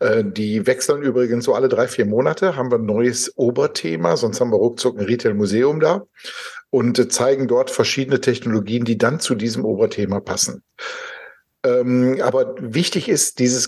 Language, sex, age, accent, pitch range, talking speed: German, male, 60-79, German, 120-190 Hz, 155 wpm